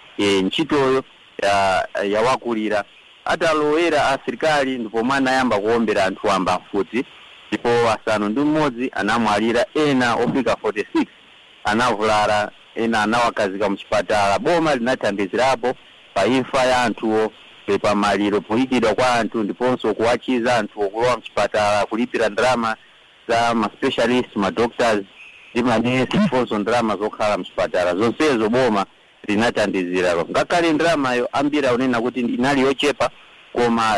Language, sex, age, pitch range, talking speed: English, male, 50-69, 105-130 Hz, 115 wpm